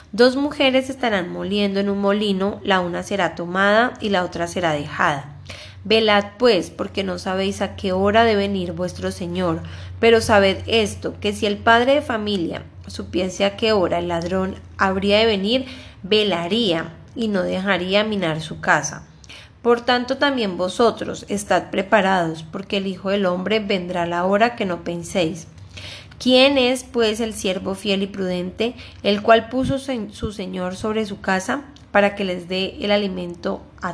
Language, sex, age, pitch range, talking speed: Spanish, female, 10-29, 185-225 Hz, 165 wpm